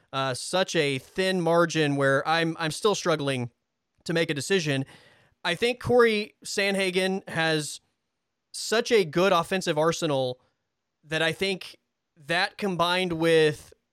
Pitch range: 140-180 Hz